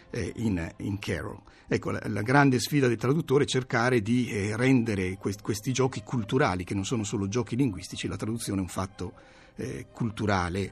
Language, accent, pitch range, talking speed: Italian, native, 95-120 Hz, 180 wpm